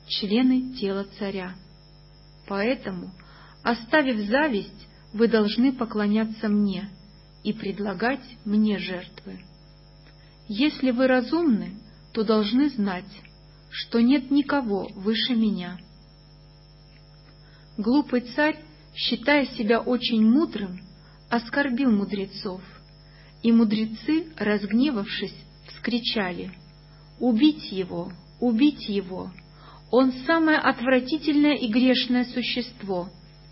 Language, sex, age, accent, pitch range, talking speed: Russian, female, 40-59, native, 180-245 Hz, 85 wpm